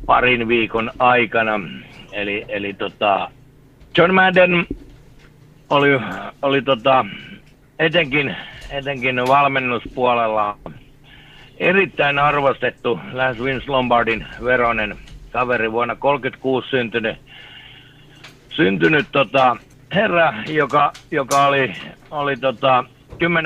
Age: 60-79